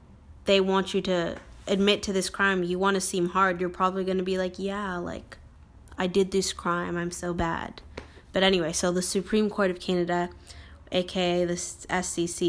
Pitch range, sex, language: 175-195 Hz, female, English